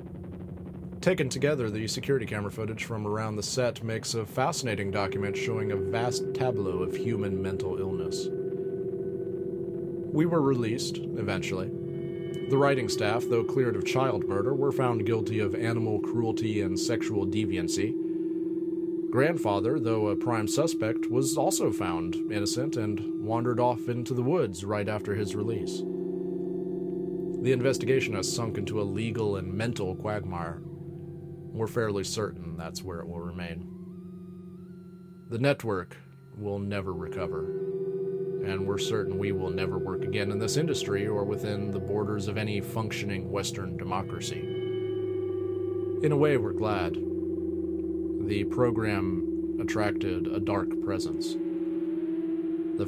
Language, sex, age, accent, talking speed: English, male, 30-49, American, 135 wpm